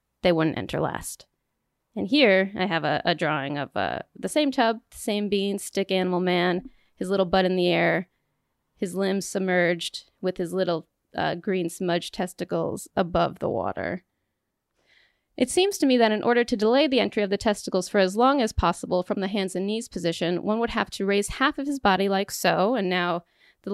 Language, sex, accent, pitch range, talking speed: English, female, American, 180-215 Hz, 200 wpm